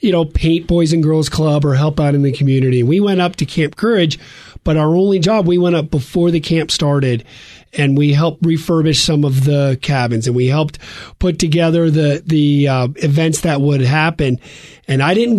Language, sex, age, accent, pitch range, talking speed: English, male, 40-59, American, 145-170 Hz, 205 wpm